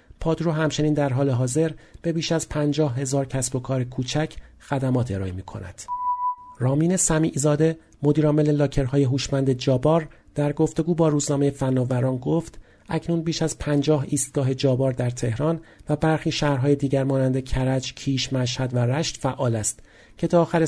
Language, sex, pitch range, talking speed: Persian, male, 130-155 Hz, 155 wpm